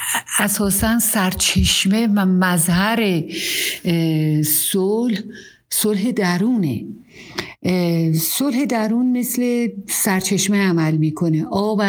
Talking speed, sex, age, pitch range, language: 65 wpm, female, 60-79, 170-205 Hz, Persian